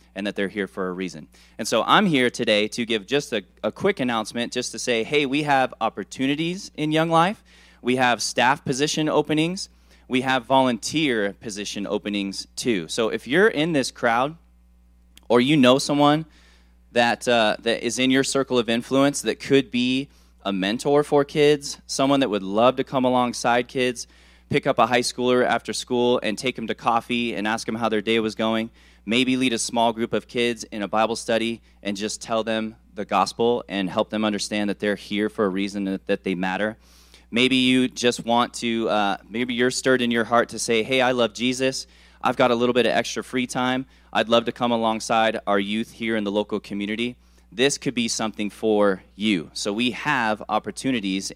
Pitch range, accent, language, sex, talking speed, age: 100-125 Hz, American, English, male, 200 wpm, 20-39